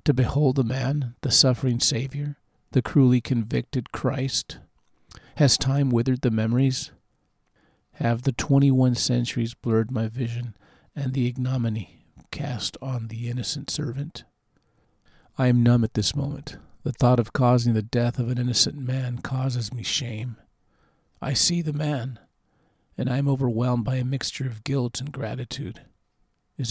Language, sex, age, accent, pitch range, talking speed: English, male, 50-69, American, 120-135 Hz, 150 wpm